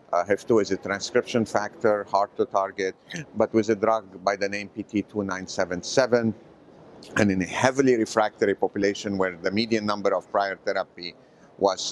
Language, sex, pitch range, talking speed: Portuguese, male, 95-115 Hz, 155 wpm